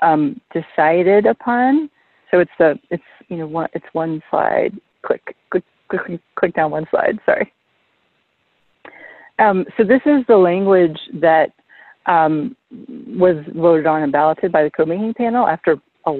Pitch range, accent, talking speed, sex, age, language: 160-200 Hz, American, 150 wpm, female, 40-59, English